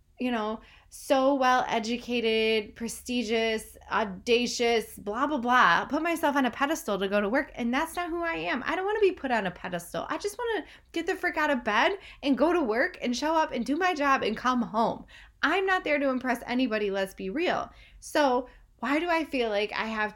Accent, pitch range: American, 205-275 Hz